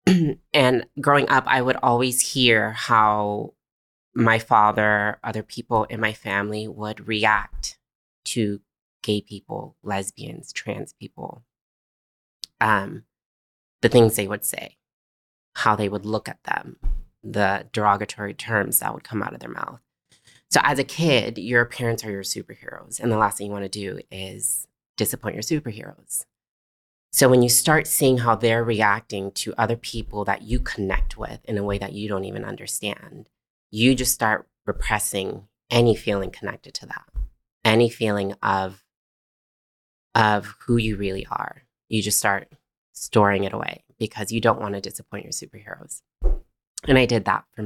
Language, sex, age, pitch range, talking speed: English, female, 20-39, 100-120 Hz, 155 wpm